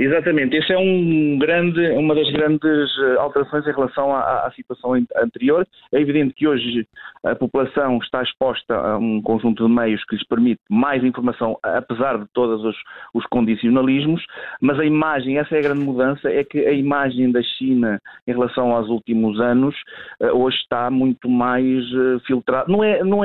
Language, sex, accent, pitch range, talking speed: Portuguese, male, Portuguese, 115-145 Hz, 170 wpm